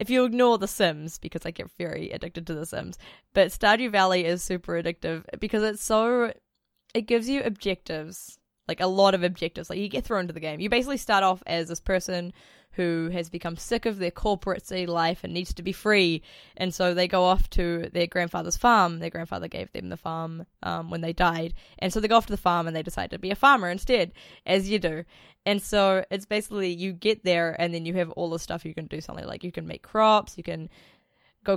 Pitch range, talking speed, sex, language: 170-210 Hz, 235 wpm, female, English